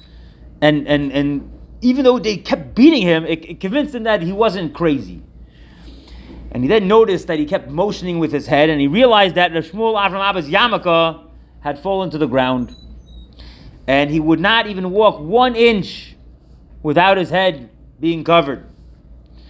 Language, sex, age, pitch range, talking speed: English, male, 30-49, 140-220 Hz, 165 wpm